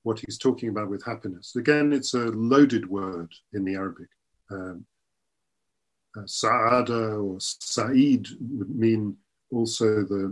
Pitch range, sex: 105-125 Hz, male